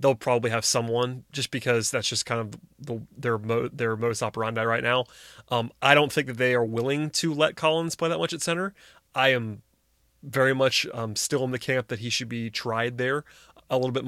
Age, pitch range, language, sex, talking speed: 30-49, 120-135 Hz, English, male, 220 wpm